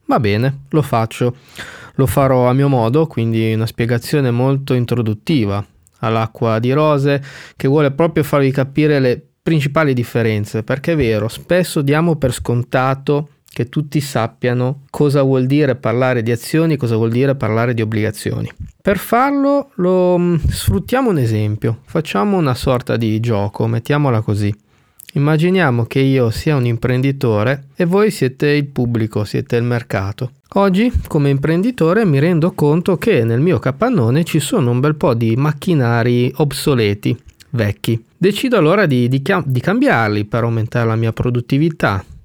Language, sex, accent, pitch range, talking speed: Italian, male, native, 115-150 Hz, 145 wpm